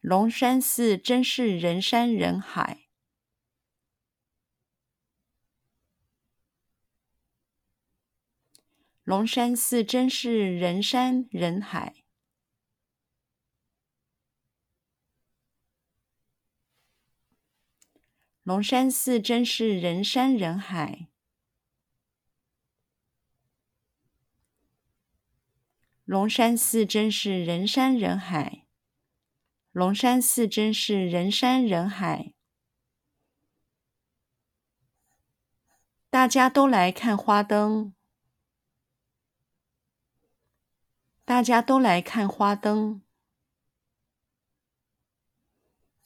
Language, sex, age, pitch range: Chinese, female, 50-69, 195-240 Hz